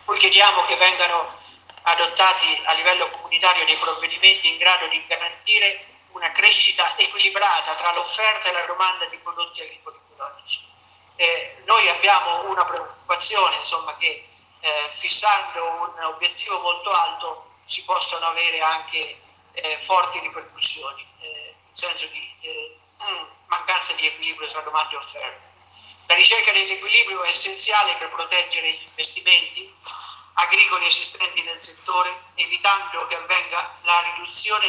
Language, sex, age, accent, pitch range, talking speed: Italian, male, 50-69, native, 170-210 Hz, 130 wpm